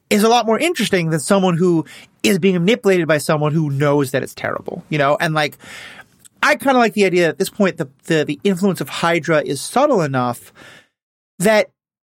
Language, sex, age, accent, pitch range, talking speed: English, male, 30-49, American, 155-215 Hz, 205 wpm